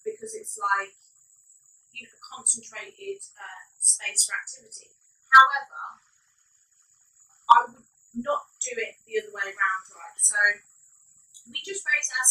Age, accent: 30-49, British